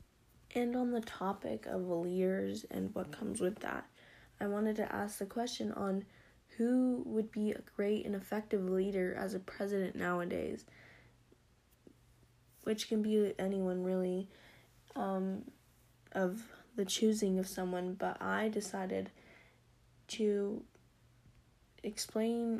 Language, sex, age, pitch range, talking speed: English, female, 10-29, 180-210 Hz, 120 wpm